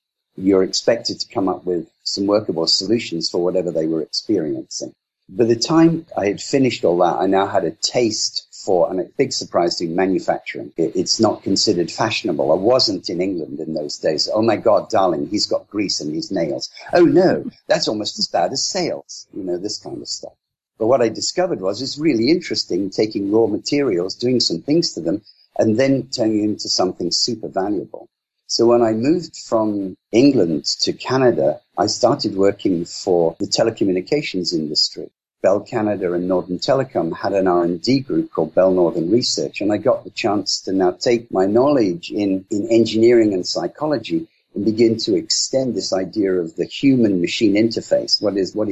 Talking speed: 185 wpm